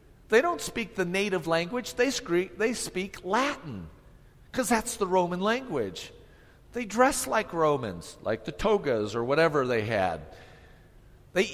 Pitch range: 145-230 Hz